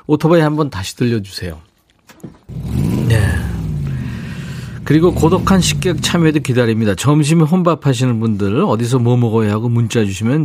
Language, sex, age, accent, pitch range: Korean, male, 40-59, native, 105-155 Hz